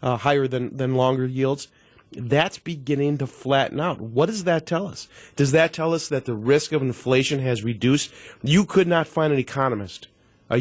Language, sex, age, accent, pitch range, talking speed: English, male, 40-59, American, 130-155 Hz, 190 wpm